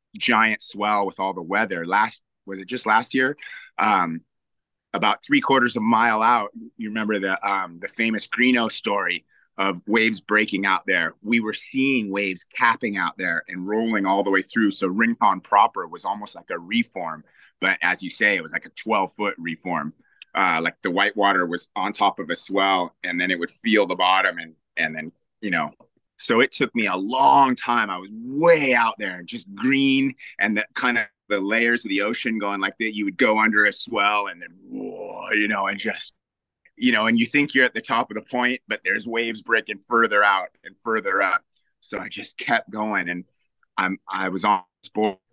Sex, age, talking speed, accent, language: male, 30-49, 210 wpm, American, English